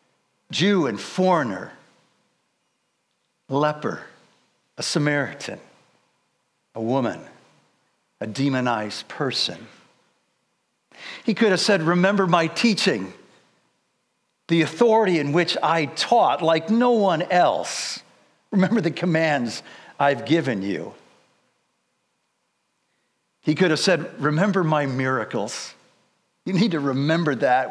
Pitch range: 145-195 Hz